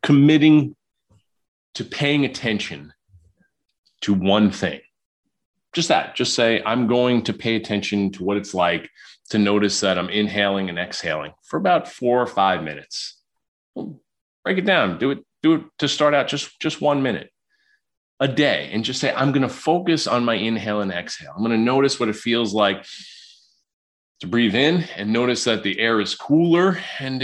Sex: male